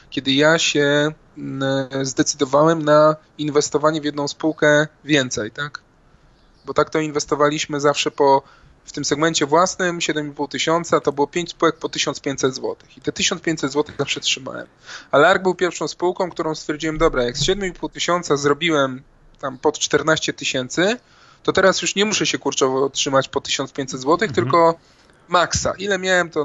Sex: male